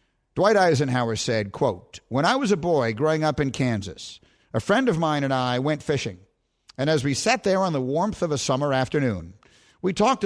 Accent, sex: American, male